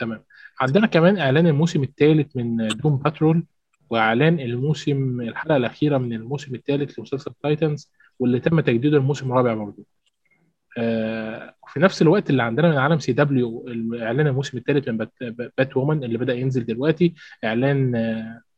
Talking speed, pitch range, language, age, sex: 140 wpm, 115-150 Hz, Arabic, 20-39, male